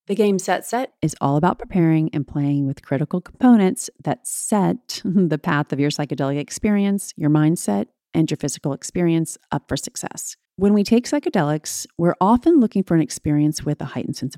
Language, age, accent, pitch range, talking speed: English, 30-49, American, 150-205 Hz, 185 wpm